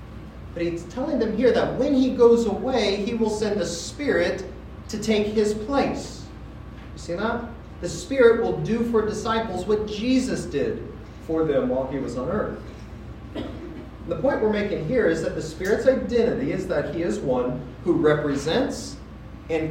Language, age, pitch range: English, 40-59, 130-210 Hz